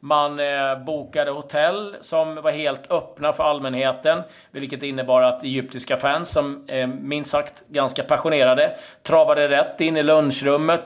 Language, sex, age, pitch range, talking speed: Swedish, male, 30-49, 120-145 Hz, 145 wpm